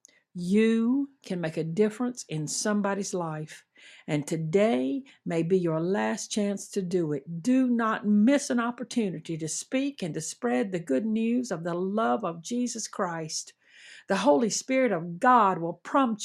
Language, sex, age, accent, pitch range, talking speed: English, female, 60-79, American, 170-235 Hz, 165 wpm